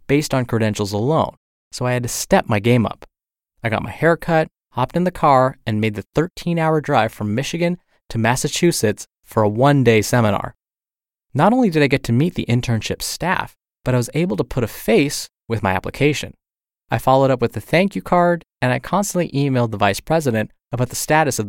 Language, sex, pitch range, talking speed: English, male, 110-155 Hz, 205 wpm